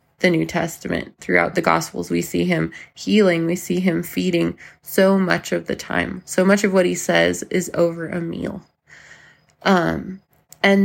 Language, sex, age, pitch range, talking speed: English, female, 20-39, 145-195 Hz, 170 wpm